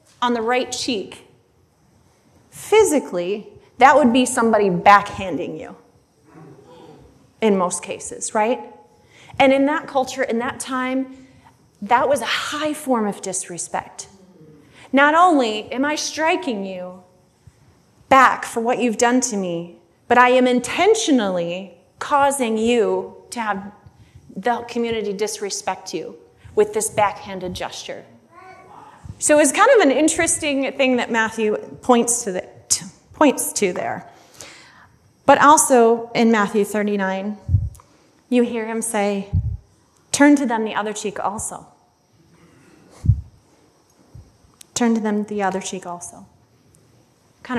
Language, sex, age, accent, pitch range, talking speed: English, female, 30-49, American, 205-280 Hz, 125 wpm